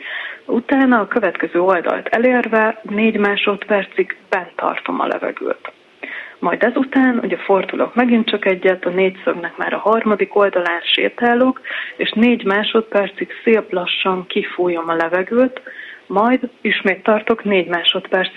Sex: female